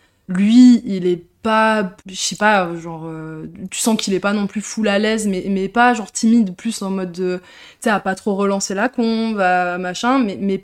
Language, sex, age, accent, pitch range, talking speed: French, female, 20-39, French, 175-205 Hz, 225 wpm